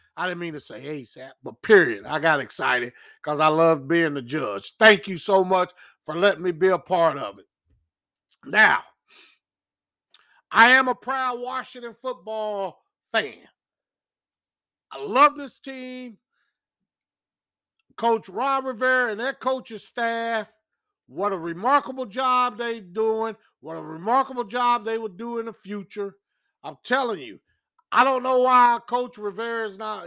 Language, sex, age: English, male, 50-69